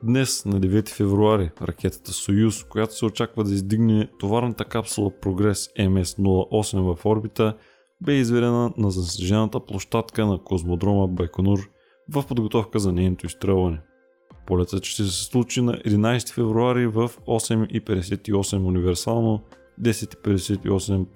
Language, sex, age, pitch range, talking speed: Bulgarian, male, 20-39, 95-115 Hz, 115 wpm